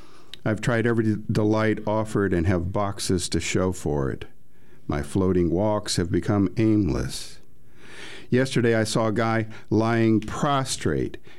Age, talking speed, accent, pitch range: 50-69, 130 wpm, American, 85-105 Hz